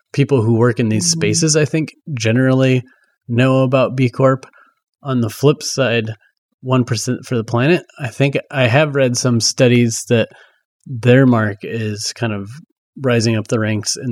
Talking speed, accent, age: 165 wpm, American, 30-49